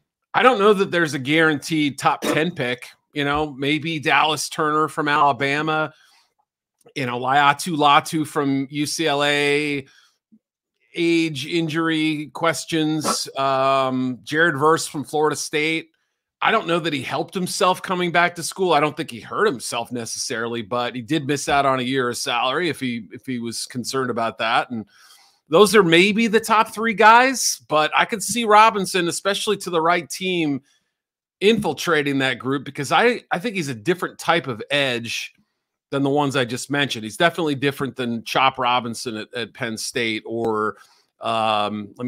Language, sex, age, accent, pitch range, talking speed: English, male, 40-59, American, 125-165 Hz, 170 wpm